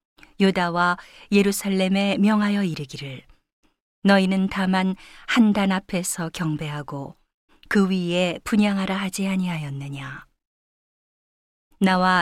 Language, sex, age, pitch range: Korean, female, 40-59, 175-205 Hz